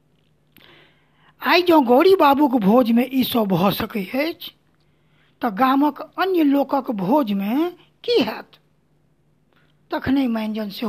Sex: female